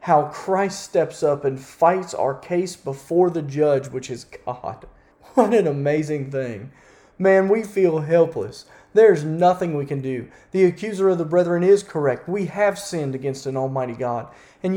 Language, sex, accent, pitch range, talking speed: English, male, American, 140-195 Hz, 170 wpm